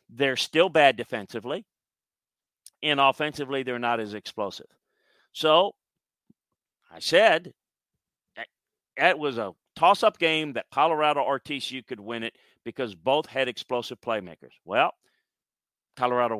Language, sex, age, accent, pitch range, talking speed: English, male, 50-69, American, 120-145 Hz, 120 wpm